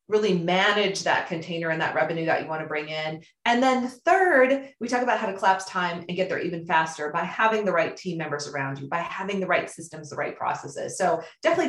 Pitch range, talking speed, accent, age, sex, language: 175-245 Hz, 235 wpm, American, 30-49, female, English